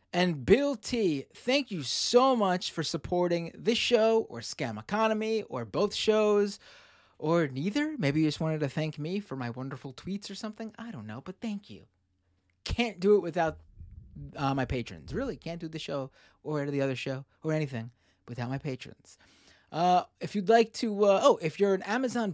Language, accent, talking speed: English, American, 190 wpm